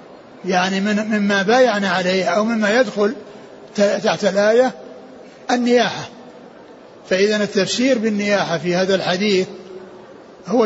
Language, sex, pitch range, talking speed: Arabic, male, 195-220 Hz, 100 wpm